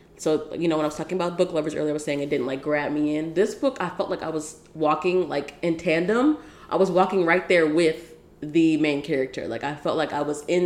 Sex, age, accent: female, 20-39, American